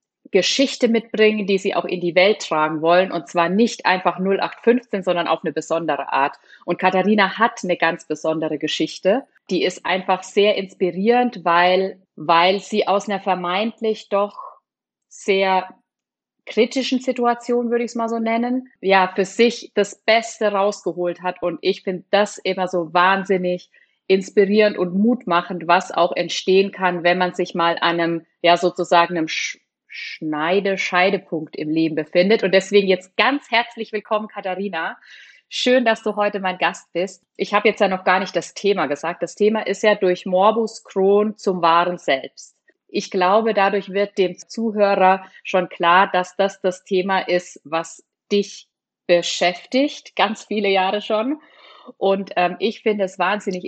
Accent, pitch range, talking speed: German, 175-210 Hz, 160 wpm